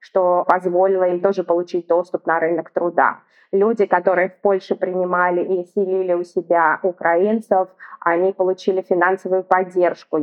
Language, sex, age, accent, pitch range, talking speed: Russian, female, 20-39, native, 180-215 Hz, 135 wpm